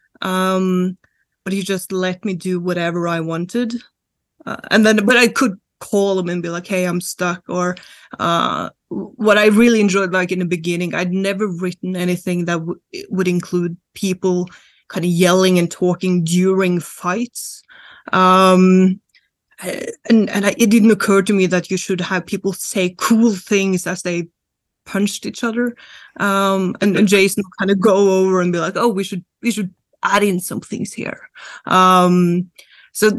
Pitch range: 180-205 Hz